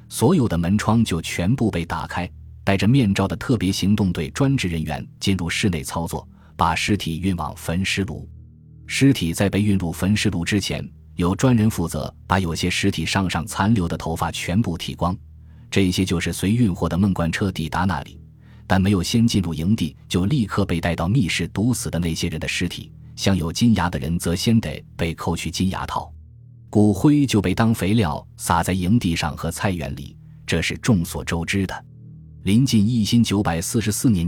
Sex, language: male, Chinese